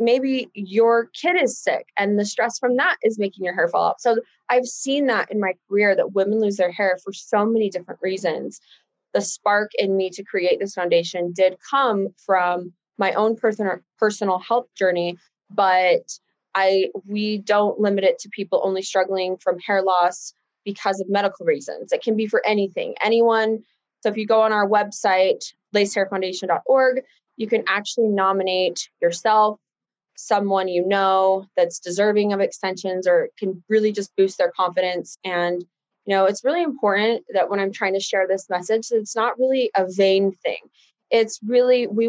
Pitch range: 190-230 Hz